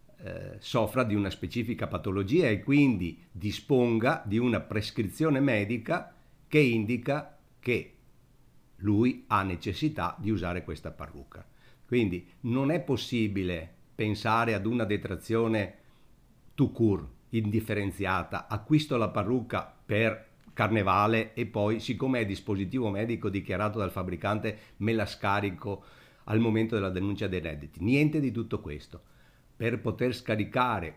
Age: 50-69